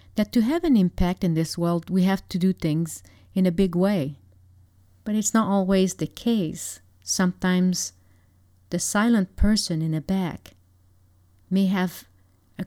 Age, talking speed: 40-59, 155 wpm